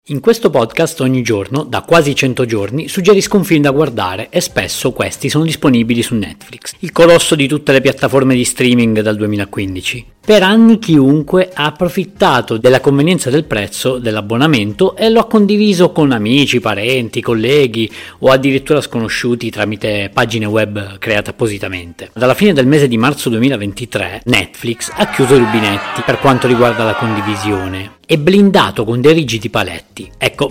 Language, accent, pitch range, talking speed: Italian, native, 115-160 Hz, 160 wpm